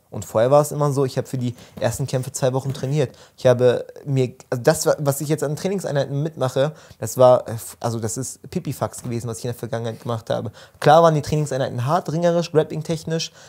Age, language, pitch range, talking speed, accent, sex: 20-39, German, 130-155 Hz, 210 wpm, German, male